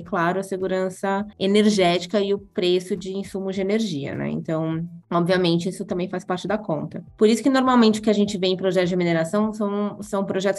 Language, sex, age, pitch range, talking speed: Portuguese, female, 20-39, 170-200 Hz, 205 wpm